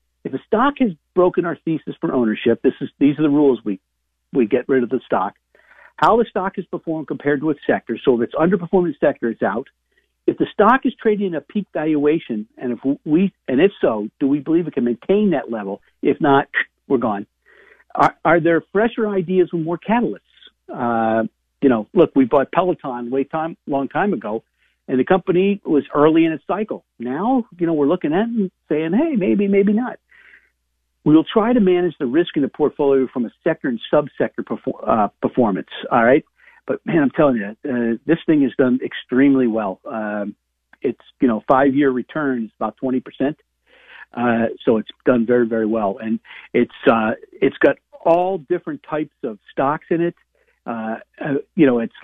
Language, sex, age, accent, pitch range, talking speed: English, male, 50-69, American, 120-180 Hz, 195 wpm